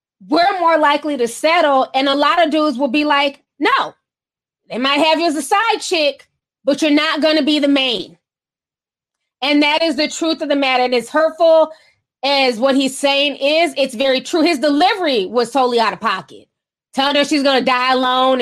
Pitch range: 250-300 Hz